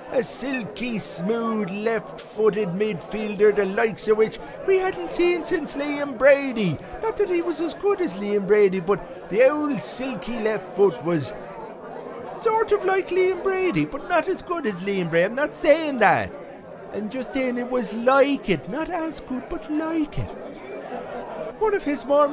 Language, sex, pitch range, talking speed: English, male, 200-295 Hz, 170 wpm